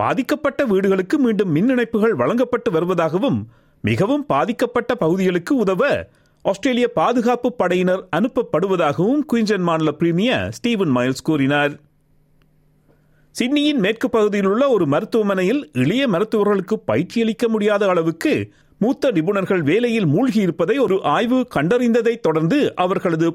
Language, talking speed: Tamil, 105 wpm